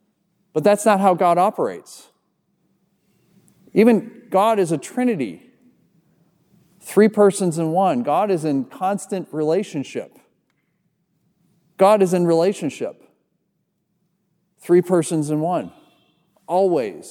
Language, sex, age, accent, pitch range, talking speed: English, male, 40-59, American, 140-190 Hz, 100 wpm